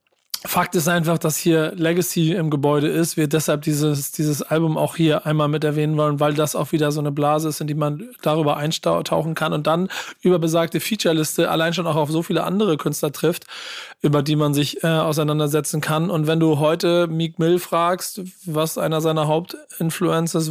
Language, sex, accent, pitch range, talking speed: German, male, German, 150-170 Hz, 195 wpm